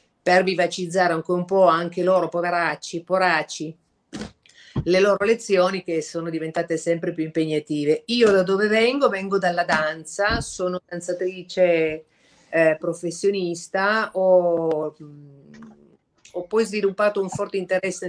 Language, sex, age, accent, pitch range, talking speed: Italian, female, 40-59, native, 165-185 Hz, 125 wpm